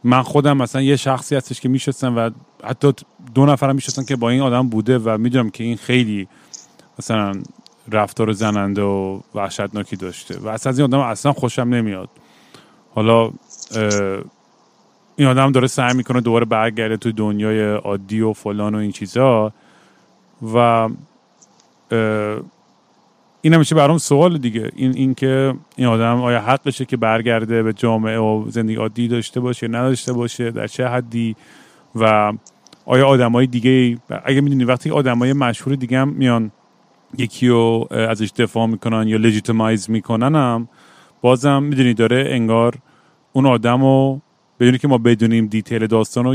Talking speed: 150 wpm